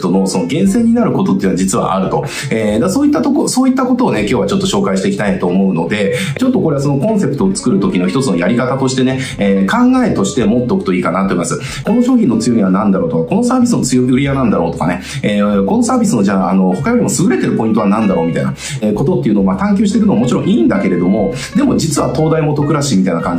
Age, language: 30-49, Japanese